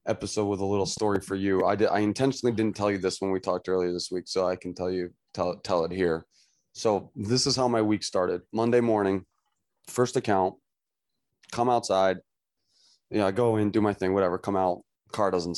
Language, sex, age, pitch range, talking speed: English, male, 20-39, 95-110 Hz, 220 wpm